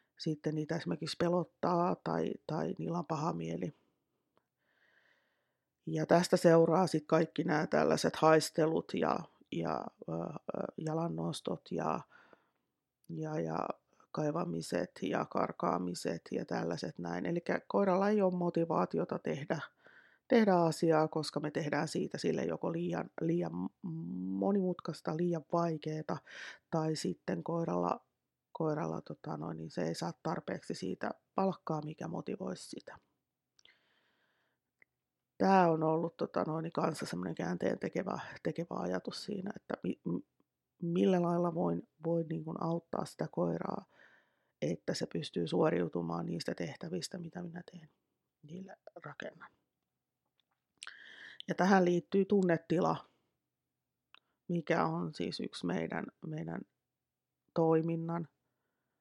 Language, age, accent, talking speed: Finnish, 30-49, native, 110 wpm